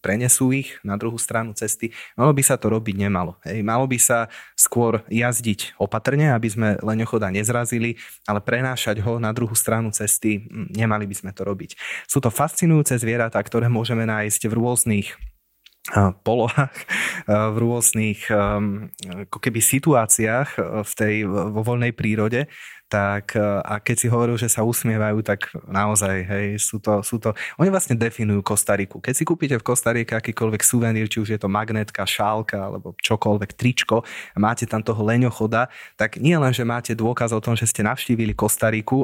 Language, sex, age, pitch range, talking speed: Slovak, male, 20-39, 105-130 Hz, 165 wpm